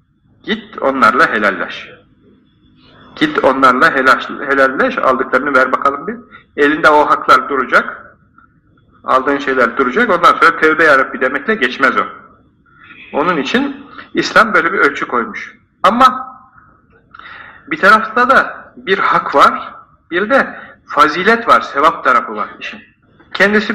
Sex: male